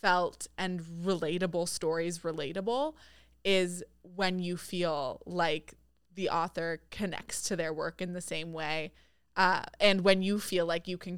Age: 20-39